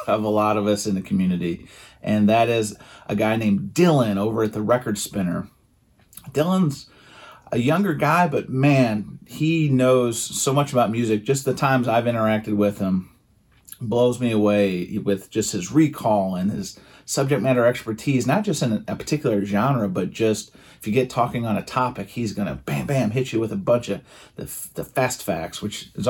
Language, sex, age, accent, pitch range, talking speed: English, male, 30-49, American, 105-130 Hz, 190 wpm